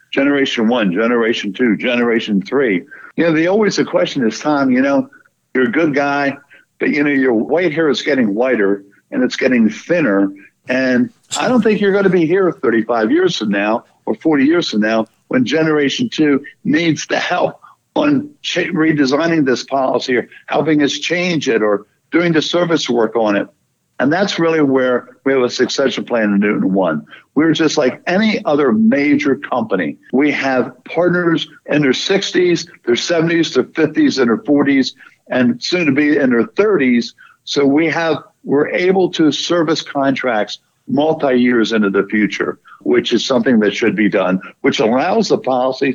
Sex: male